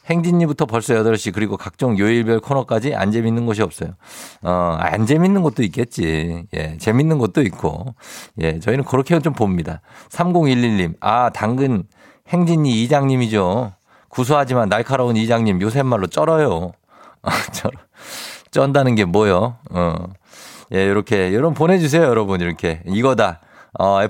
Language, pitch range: Korean, 95-135 Hz